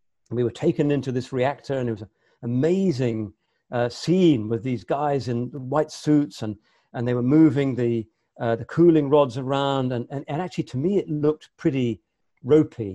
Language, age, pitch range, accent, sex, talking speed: English, 50-69, 120-155 Hz, British, male, 185 wpm